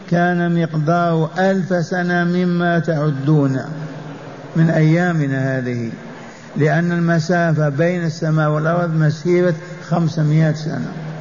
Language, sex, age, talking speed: Arabic, male, 50-69, 90 wpm